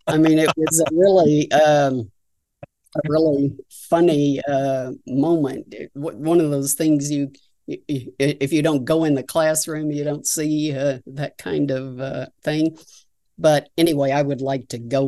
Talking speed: 165 wpm